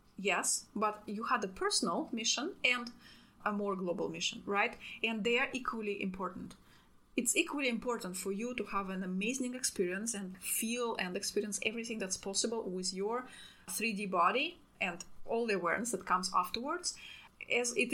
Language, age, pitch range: English, 30-49, 190-245 Hz